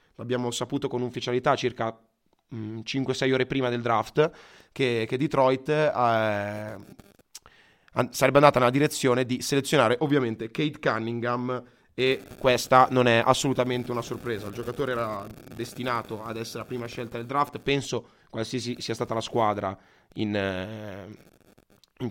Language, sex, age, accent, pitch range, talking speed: Italian, male, 20-39, native, 115-130 Hz, 135 wpm